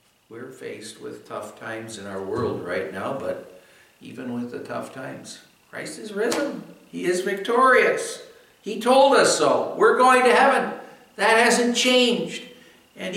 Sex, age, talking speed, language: male, 60-79, 155 wpm, English